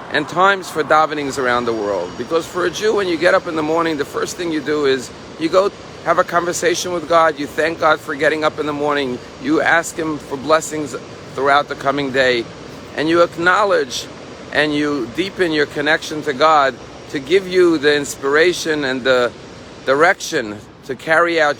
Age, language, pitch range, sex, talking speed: 50-69, English, 140-170 Hz, male, 195 wpm